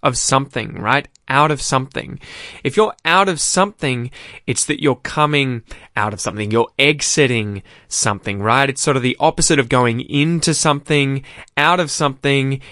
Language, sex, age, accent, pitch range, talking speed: English, male, 20-39, Australian, 110-145 Hz, 160 wpm